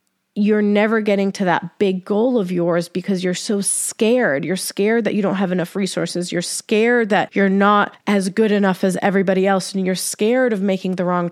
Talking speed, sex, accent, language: 205 wpm, female, American, English